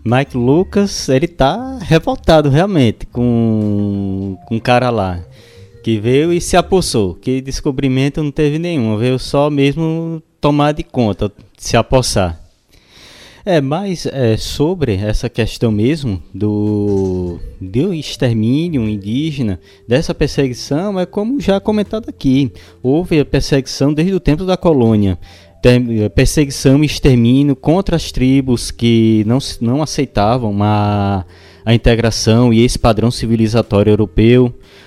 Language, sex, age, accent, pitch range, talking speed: Portuguese, male, 20-39, Brazilian, 110-150 Hz, 125 wpm